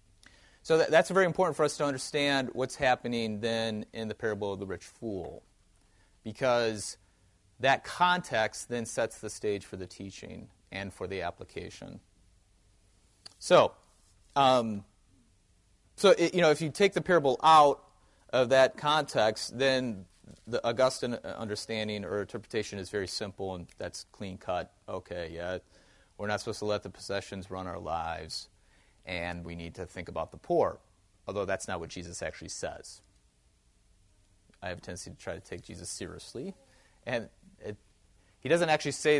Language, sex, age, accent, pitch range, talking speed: English, male, 30-49, American, 95-130 Hz, 155 wpm